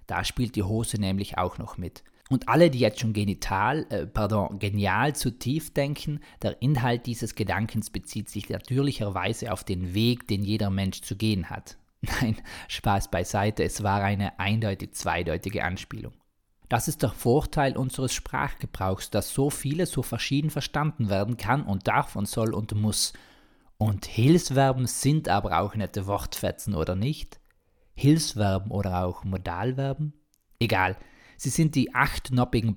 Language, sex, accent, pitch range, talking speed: German, male, German, 100-125 Hz, 150 wpm